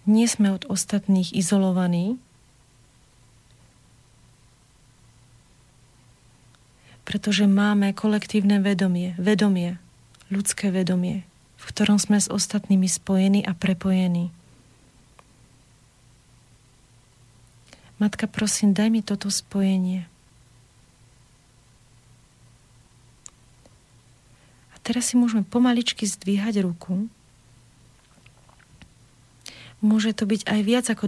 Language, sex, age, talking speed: Slovak, female, 40-59, 75 wpm